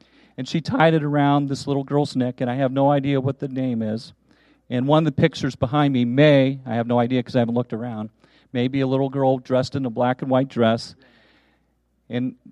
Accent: American